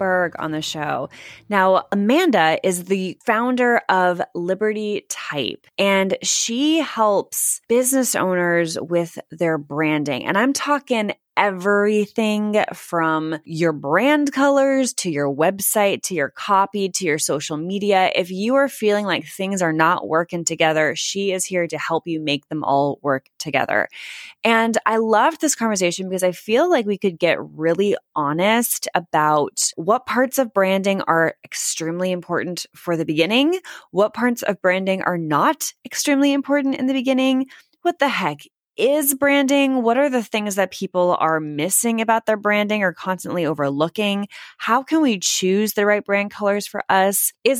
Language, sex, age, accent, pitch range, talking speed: English, female, 20-39, American, 170-235 Hz, 155 wpm